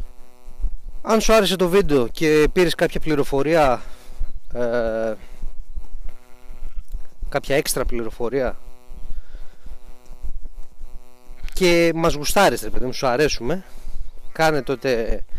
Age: 30-49